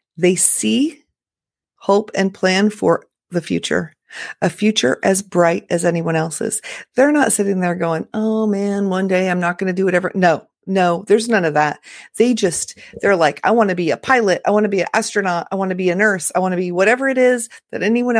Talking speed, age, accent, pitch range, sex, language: 220 wpm, 40-59, American, 180-235 Hz, female, English